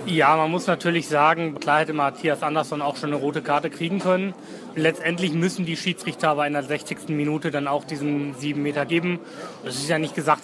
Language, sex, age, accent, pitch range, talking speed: German, male, 30-49, German, 155-180 Hz, 205 wpm